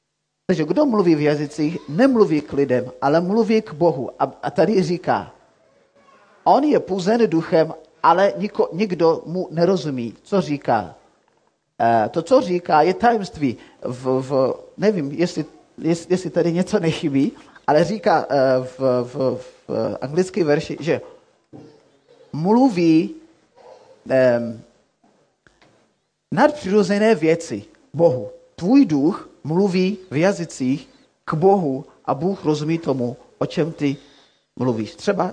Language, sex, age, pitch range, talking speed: Czech, male, 30-49, 130-190 Hz, 125 wpm